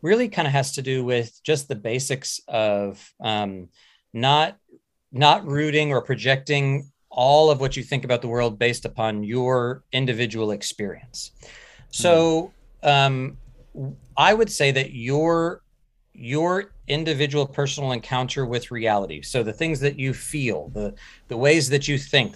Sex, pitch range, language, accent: male, 120-145 Hz, English, American